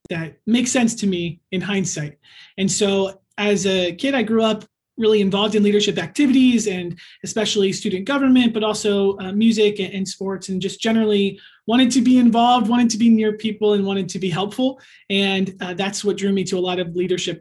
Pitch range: 185-215 Hz